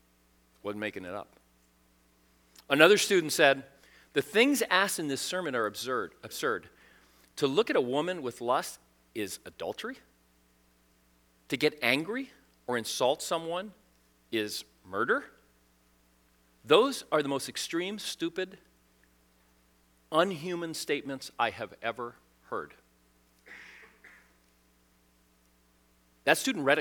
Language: English